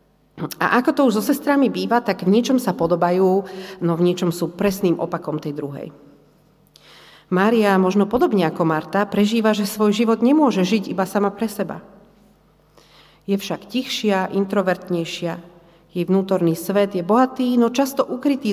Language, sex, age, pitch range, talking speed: Slovak, female, 40-59, 180-220 Hz, 150 wpm